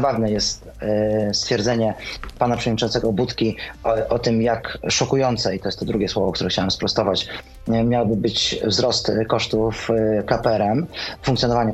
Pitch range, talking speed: 110-130 Hz, 135 wpm